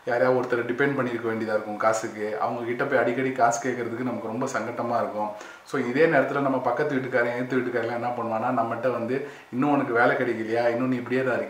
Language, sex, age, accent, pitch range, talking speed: Tamil, male, 20-39, native, 115-130 Hz, 175 wpm